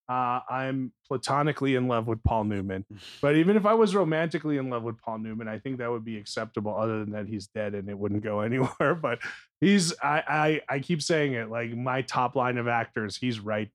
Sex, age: male, 30-49